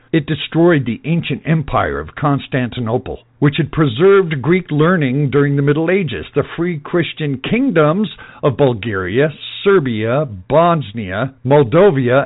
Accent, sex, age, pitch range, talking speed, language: American, male, 60-79, 125-170 Hz, 120 wpm, English